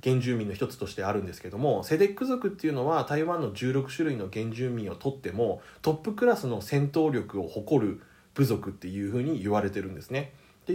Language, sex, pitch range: Japanese, male, 115-170 Hz